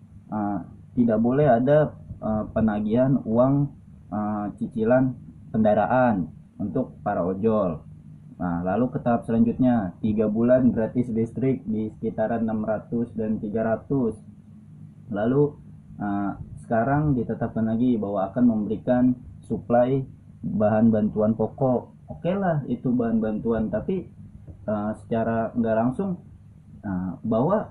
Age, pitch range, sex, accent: 20-39, 105-130 Hz, male, native